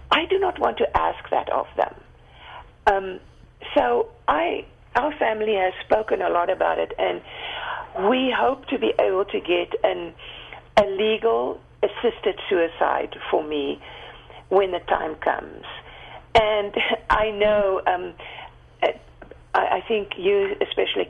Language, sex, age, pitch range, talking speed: English, female, 50-69, 180-275 Hz, 135 wpm